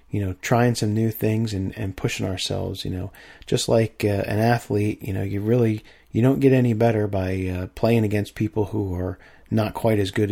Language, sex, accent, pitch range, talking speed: English, male, American, 95-115 Hz, 215 wpm